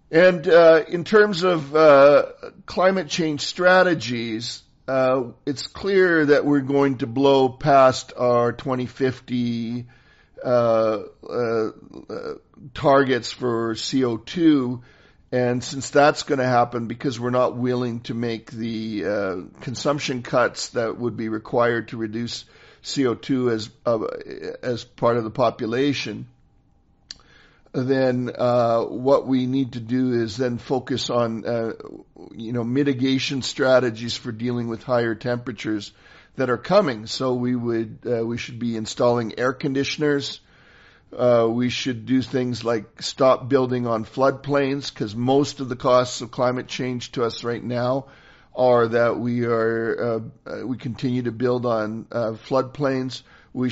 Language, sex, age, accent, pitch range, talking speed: English, male, 50-69, American, 120-135 Hz, 140 wpm